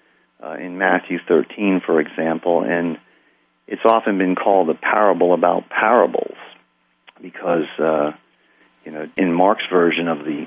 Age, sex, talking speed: 50-69, male, 140 wpm